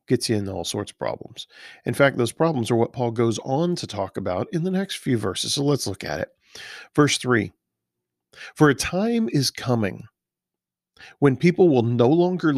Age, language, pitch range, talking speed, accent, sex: 40-59, English, 110-150 Hz, 195 wpm, American, male